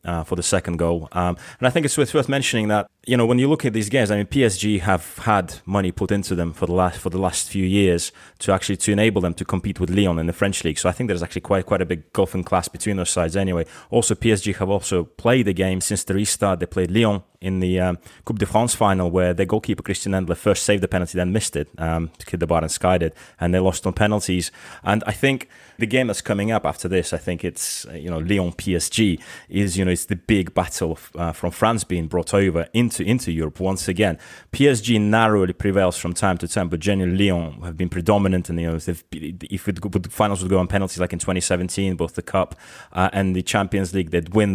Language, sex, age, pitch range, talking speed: English, male, 20-39, 90-105 Hz, 250 wpm